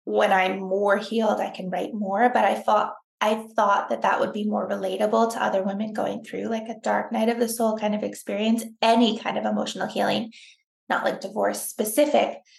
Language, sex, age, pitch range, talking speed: English, female, 20-39, 210-240 Hz, 205 wpm